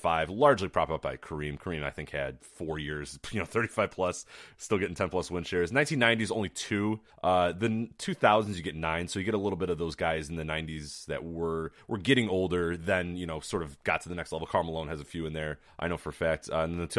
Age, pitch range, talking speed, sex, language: 30-49, 80-100 Hz, 245 wpm, male, English